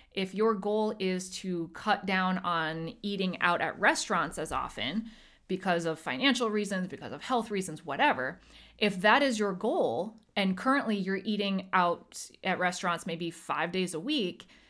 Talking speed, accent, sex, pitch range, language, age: 165 wpm, American, female, 170-220 Hz, English, 20-39